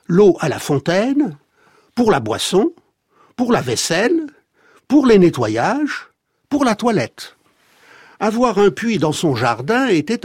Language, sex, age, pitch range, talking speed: French, male, 60-79, 155-235 Hz, 135 wpm